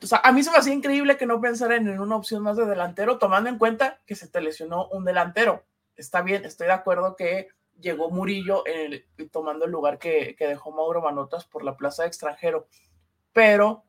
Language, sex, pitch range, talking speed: Spanish, male, 165-220 Hz, 210 wpm